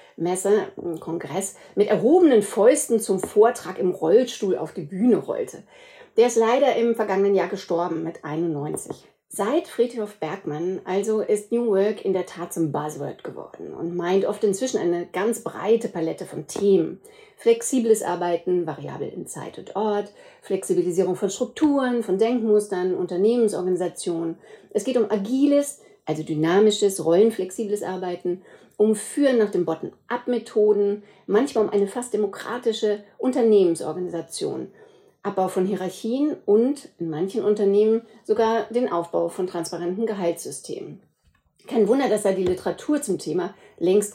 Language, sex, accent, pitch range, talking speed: German, female, German, 180-230 Hz, 135 wpm